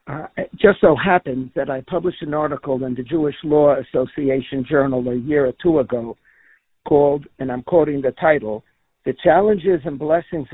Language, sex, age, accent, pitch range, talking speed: English, male, 60-79, American, 145-195 Hz, 175 wpm